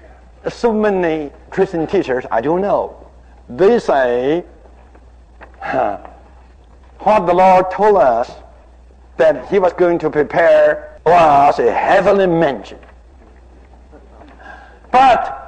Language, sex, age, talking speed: English, male, 60-79, 95 wpm